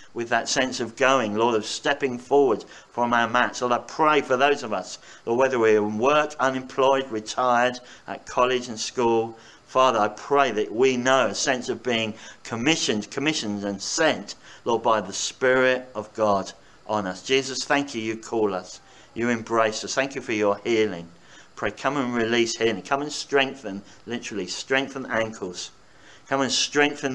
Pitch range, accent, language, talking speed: 105-135 Hz, British, English, 175 wpm